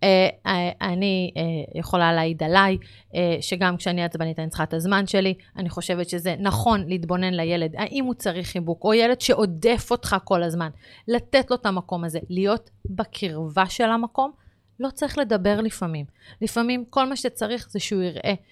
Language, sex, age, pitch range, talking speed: Hebrew, female, 30-49, 175-225 Hz, 155 wpm